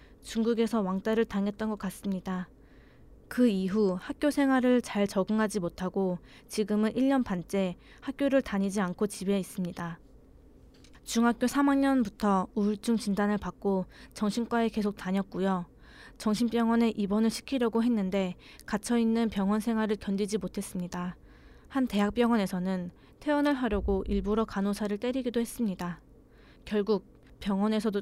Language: Korean